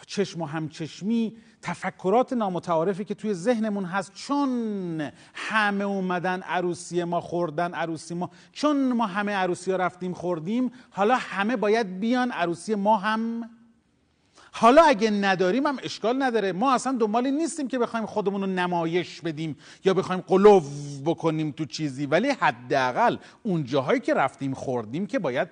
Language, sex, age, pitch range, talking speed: Persian, male, 40-59, 165-245 Hz, 145 wpm